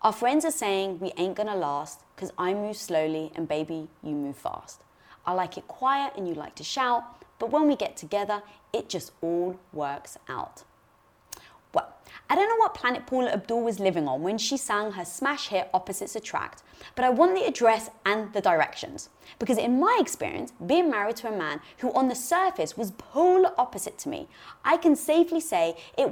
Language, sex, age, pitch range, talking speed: English, female, 20-39, 190-280 Hz, 200 wpm